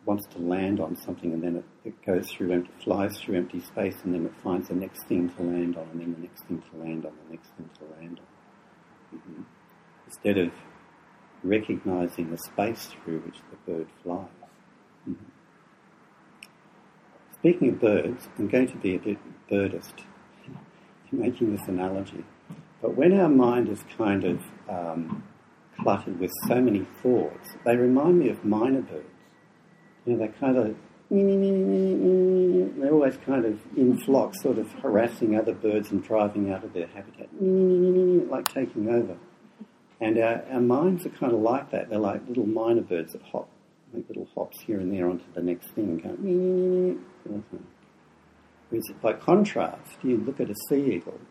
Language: English